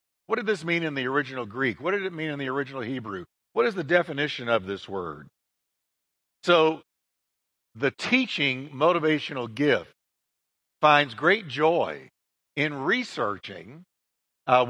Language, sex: English, male